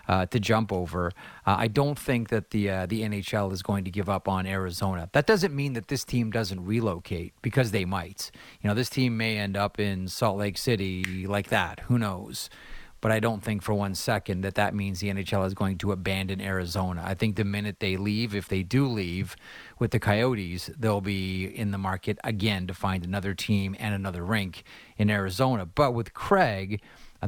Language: English